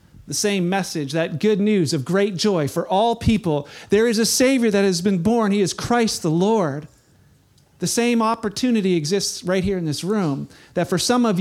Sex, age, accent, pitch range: male, 40-59, American, 160-230 Hz